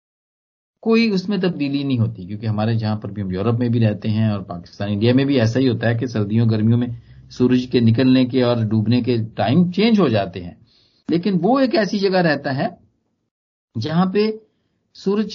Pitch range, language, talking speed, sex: 115-180 Hz, Hindi, 200 wpm, male